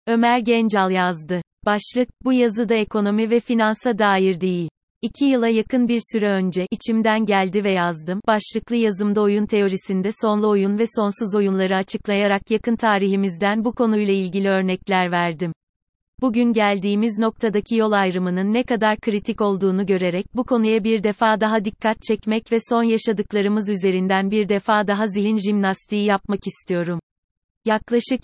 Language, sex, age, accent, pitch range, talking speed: Turkish, female, 30-49, native, 195-225 Hz, 145 wpm